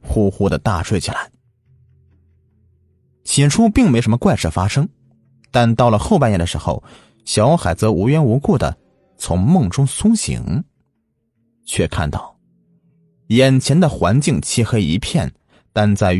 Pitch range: 90-135 Hz